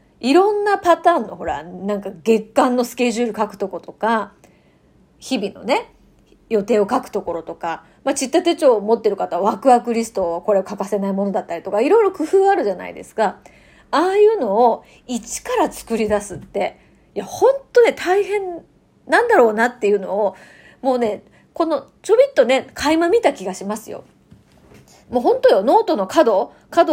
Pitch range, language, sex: 205-300 Hz, Japanese, female